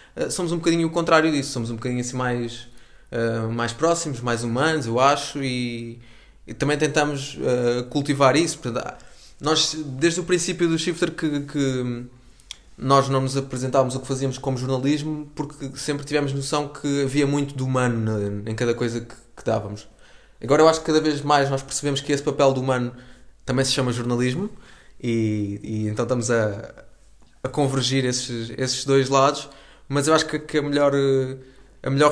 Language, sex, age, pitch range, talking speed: Portuguese, male, 20-39, 125-145 Hz, 160 wpm